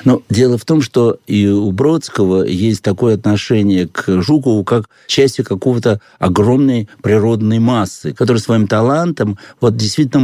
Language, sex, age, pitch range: Russian, male, 60-79, 100-125 Hz